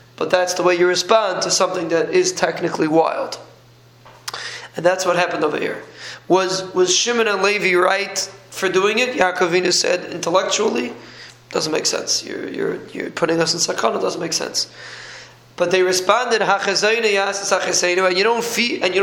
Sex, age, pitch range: male, 20-39, 170-200 Hz